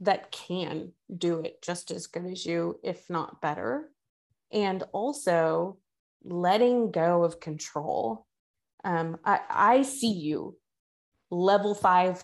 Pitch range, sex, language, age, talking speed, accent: 175-225 Hz, female, English, 20-39, 125 wpm, American